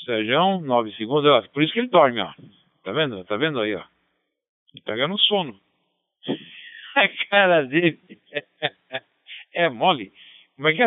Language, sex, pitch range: Portuguese, male, 130-170 Hz